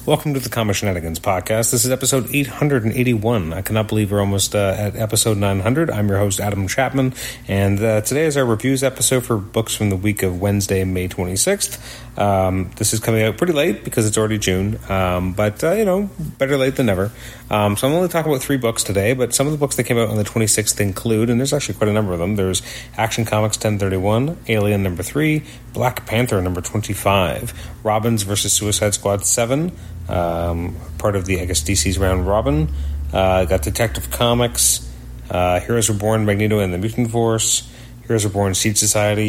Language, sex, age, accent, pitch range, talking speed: English, male, 30-49, American, 100-120 Hz, 205 wpm